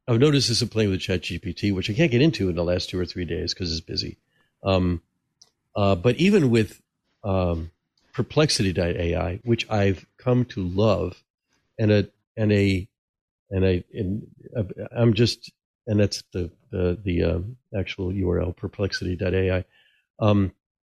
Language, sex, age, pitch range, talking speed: English, male, 50-69, 90-120 Hz, 160 wpm